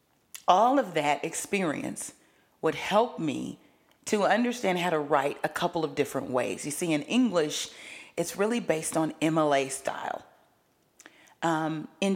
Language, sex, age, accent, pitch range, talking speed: English, female, 40-59, American, 150-200 Hz, 145 wpm